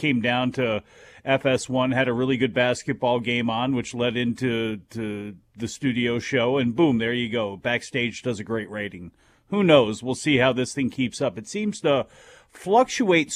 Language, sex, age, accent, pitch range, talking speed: English, male, 40-59, American, 125-155 Hz, 185 wpm